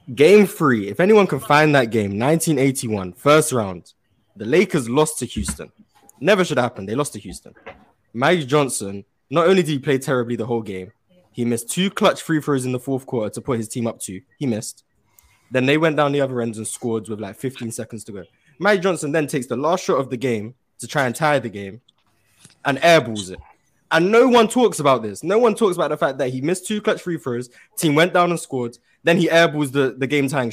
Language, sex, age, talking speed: English, male, 20-39, 230 wpm